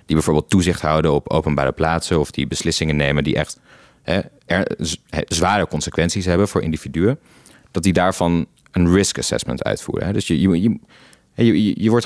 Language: Dutch